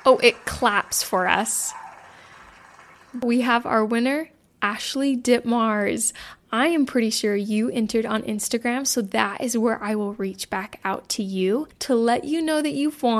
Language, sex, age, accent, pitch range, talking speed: English, female, 10-29, American, 195-240 Hz, 165 wpm